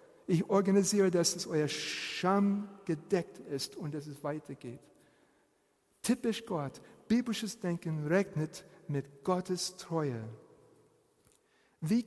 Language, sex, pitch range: German, male, 150-200 Hz